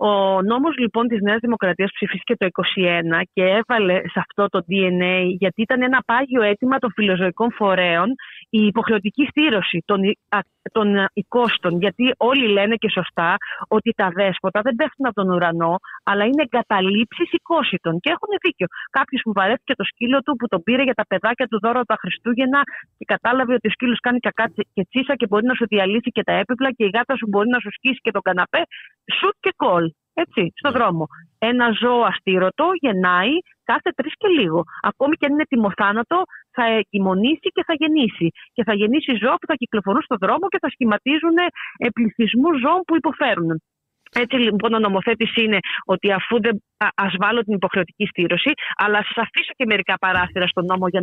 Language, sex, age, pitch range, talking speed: Greek, female, 30-49, 190-260 Hz, 180 wpm